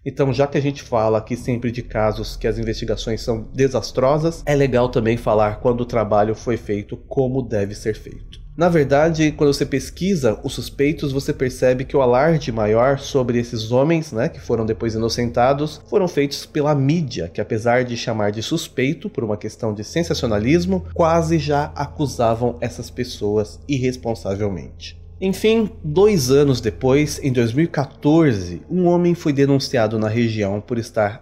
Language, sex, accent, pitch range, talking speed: Portuguese, male, Brazilian, 115-150 Hz, 160 wpm